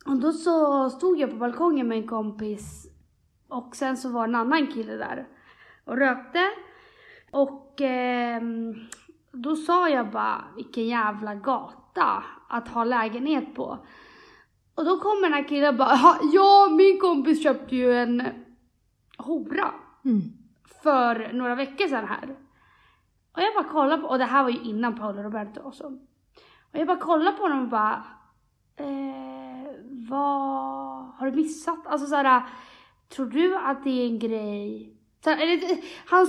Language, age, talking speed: Swedish, 30-49, 150 wpm